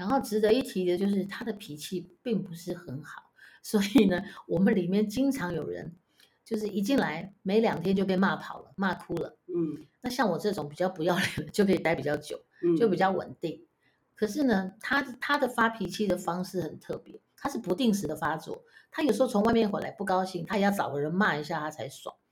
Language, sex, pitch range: Chinese, female, 175-225 Hz